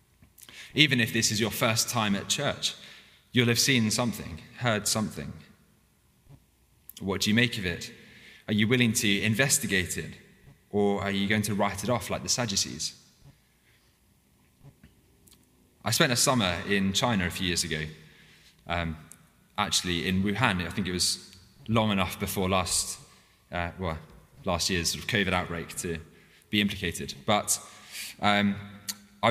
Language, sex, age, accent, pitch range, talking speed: English, male, 20-39, British, 85-105 Hz, 150 wpm